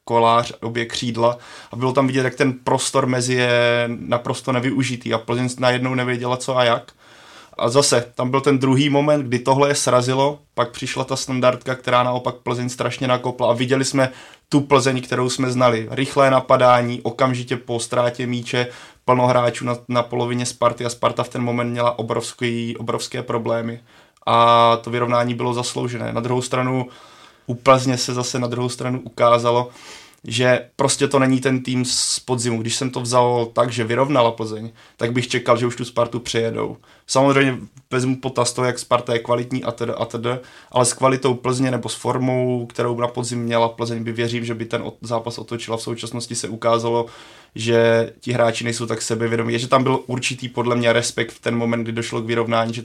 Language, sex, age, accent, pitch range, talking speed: Czech, male, 20-39, native, 120-125 Hz, 185 wpm